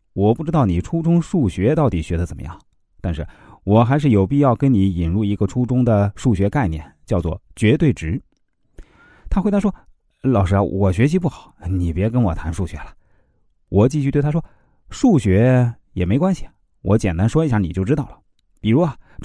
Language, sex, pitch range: Chinese, male, 95-140 Hz